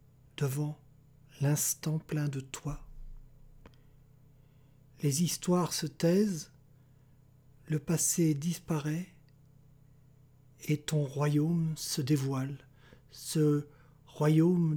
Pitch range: 140-160 Hz